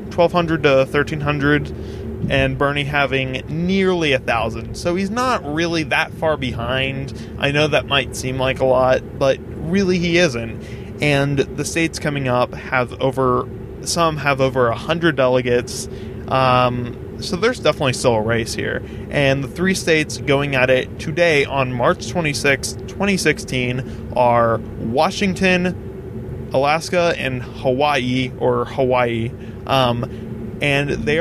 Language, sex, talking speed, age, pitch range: English, male, 135 wpm, 20-39, 125-155 Hz